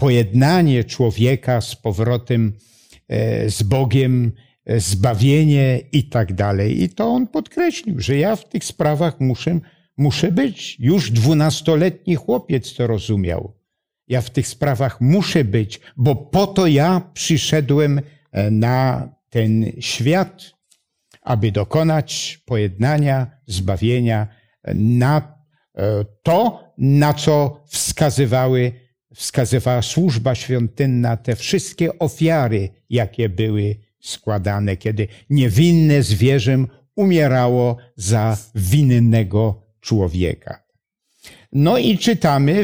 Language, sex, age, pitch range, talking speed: Polish, male, 60-79, 115-150 Hz, 95 wpm